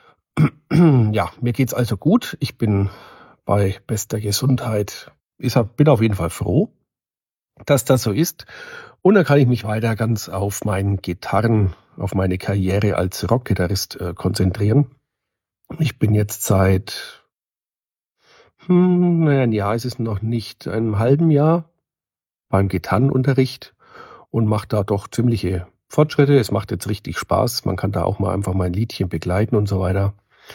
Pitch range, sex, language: 95-125 Hz, male, German